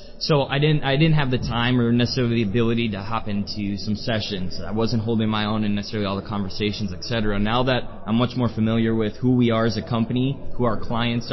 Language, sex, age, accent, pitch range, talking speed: English, male, 20-39, American, 110-130 Hz, 235 wpm